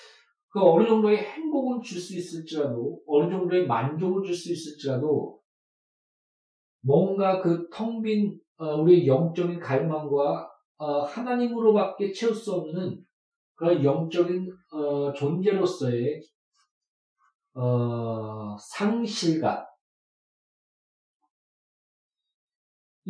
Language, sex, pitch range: Korean, male, 145-200 Hz